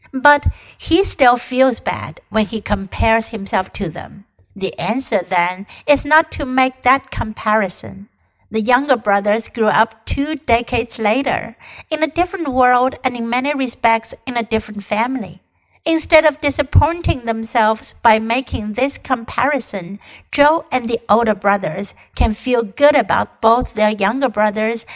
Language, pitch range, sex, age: Chinese, 210-270 Hz, female, 60-79